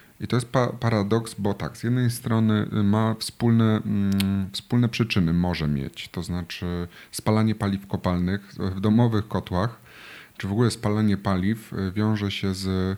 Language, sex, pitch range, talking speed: Polish, male, 90-115 Hz, 135 wpm